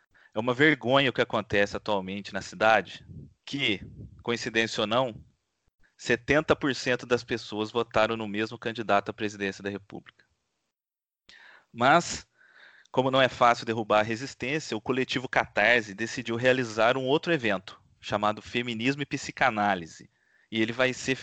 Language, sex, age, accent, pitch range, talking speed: Portuguese, male, 30-49, Brazilian, 110-130 Hz, 135 wpm